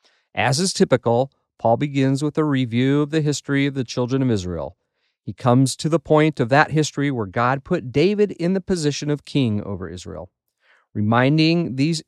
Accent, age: American, 50-69